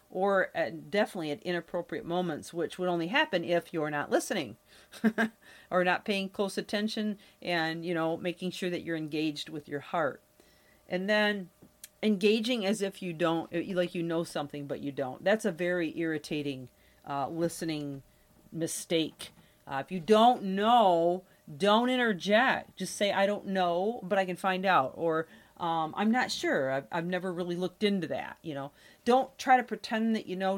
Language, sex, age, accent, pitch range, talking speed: English, female, 40-59, American, 165-210 Hz, 175 wpm